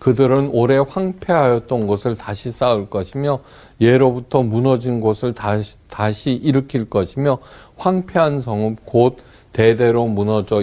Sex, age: male, 50-69